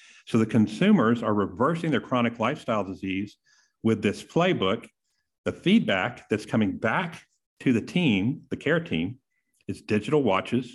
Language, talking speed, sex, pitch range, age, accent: English, 145 wpm, male, 105-140 Hz, 50-69, American